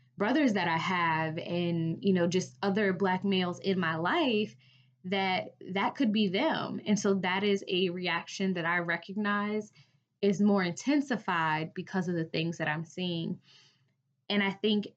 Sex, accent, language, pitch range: female, American, English, 165-205 Hz